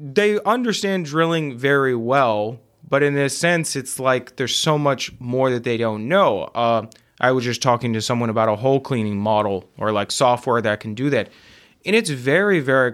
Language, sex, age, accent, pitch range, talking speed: English, male, 20-39, American, 115-145 Hz, 195 wpm